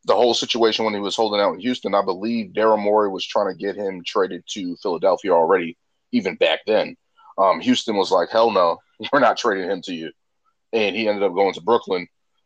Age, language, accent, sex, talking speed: 30-49, English, American, male, 215 wpm